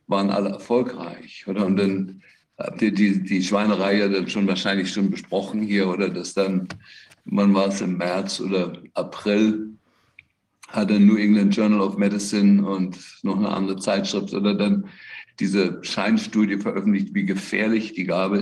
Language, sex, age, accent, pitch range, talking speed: German, male, 60-79, German, 100-110 Hz, 160 wpm